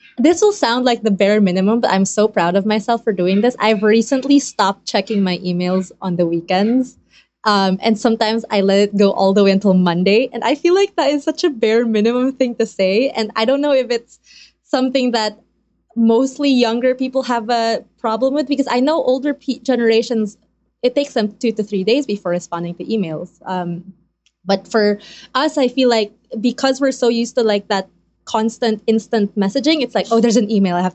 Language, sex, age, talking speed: English, female, 20-39, 205 wpm